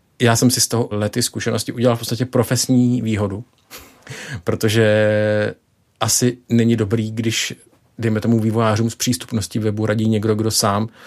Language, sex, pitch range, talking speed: Czech, male, 110-125 Hz, 145 wpm